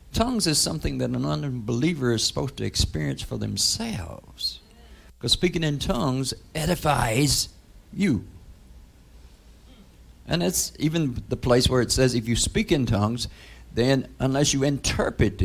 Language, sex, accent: English, male, American